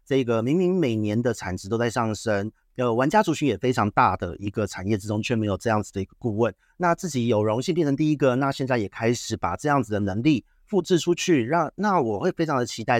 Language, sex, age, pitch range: Chinese, male, 30-49, 105-135 Hz